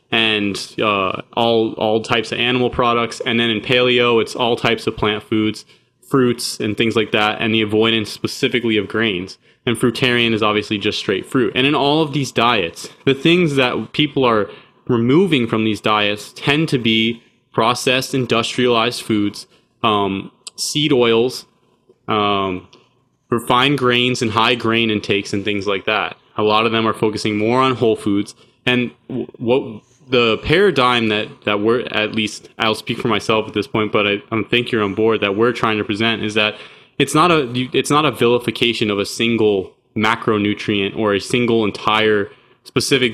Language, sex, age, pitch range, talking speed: English, male, 20-39, 105-125 Hz, 175 wpm